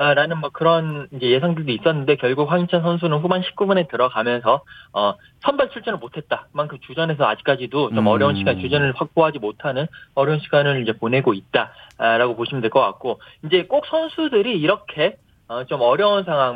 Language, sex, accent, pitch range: Korean, male, native, 130-190 Hz